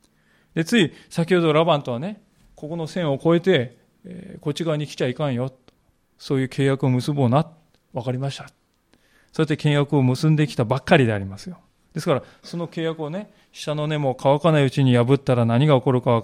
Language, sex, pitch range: Japanese, male, 130-175 Hz